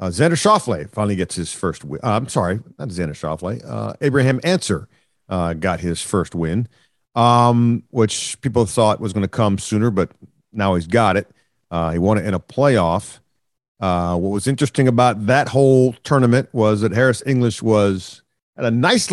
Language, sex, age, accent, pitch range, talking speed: English, male, 50-69, American, 95-130 Hz, 180 wpm